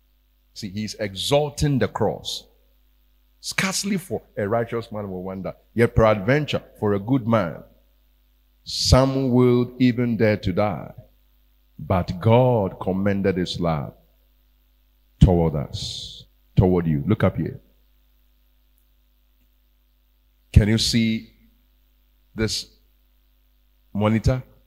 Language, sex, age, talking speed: English, male, 50-69, 100 wpm